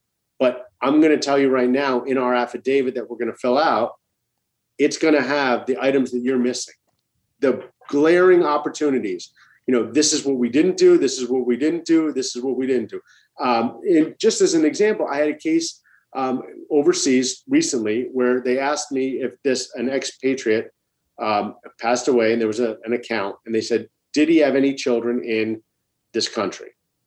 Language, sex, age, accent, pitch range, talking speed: English, male, 40-59, American, 125-150 Hz, 200 wpm